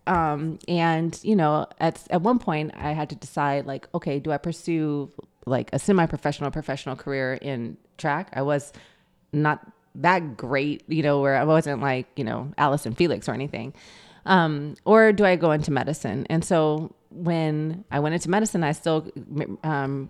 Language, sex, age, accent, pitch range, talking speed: English, female, 20-39, American, 140-165 Hz, 175 wpm